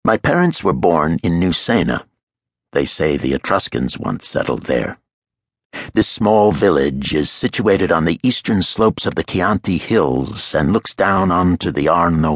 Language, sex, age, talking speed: English, male, 60-79, 155 wpm